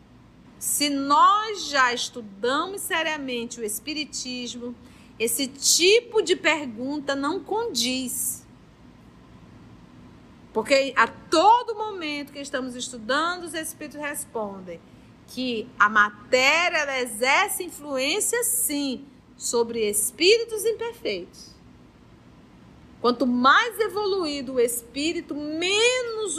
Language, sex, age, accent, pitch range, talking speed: Portuguese, female, 40-59, Brazilian, 240-315 Hz, 85 wpm